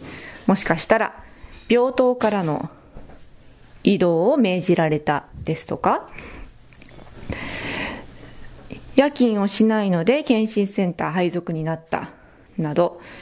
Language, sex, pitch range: Japanese, female, 165-230 Hz